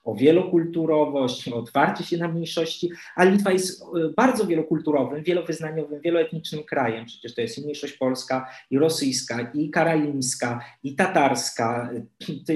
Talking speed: 135 wpm